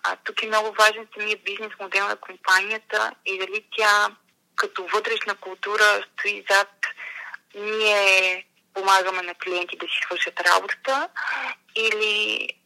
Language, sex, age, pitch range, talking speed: Bulgarian, female, 20-39, 195-235 Hz, 135 wpm